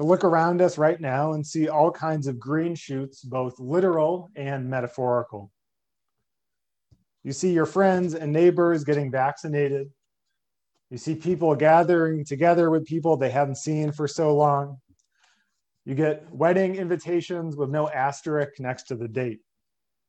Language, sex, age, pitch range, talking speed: English, male, 30-49, 130-165 Hz, 145 wpm